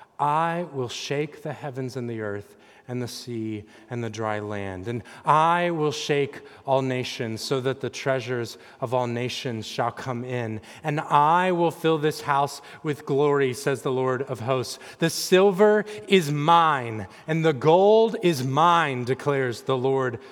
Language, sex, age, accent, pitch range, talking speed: English, male, 30-49, American, 135-205 Hz, 165 wpm